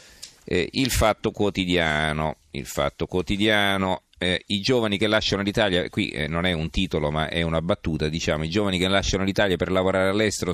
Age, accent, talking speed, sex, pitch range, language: 40-59, native, 180 wpm, male, 85-100 Hz, Italian